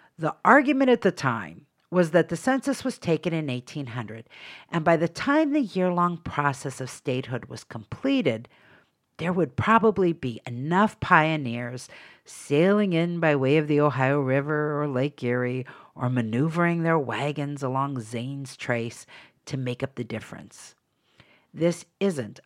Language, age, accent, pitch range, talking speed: English, 50-69, American, 125-175 Hz, 145 wpm